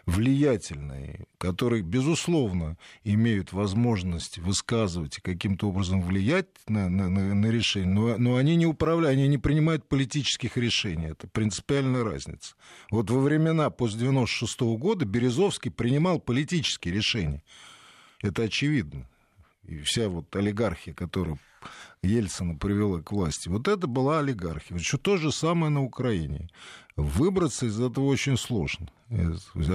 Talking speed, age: 130 wpm, 50-69